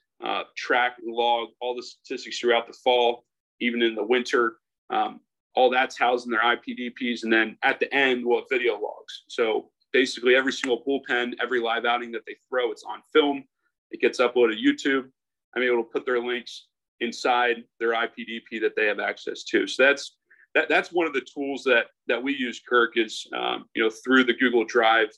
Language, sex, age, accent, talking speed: English, male, 40-59, American, 200 wpm